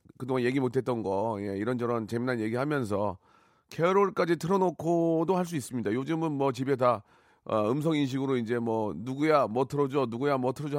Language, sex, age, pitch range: Korean, male, 40-59, 120-155 Hz